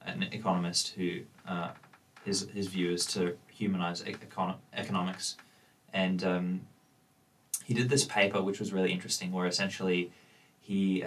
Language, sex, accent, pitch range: English, male, Australian, 95-110 Hz